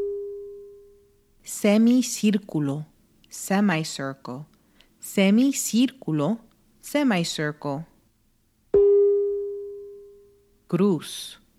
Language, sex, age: English, female, 30-49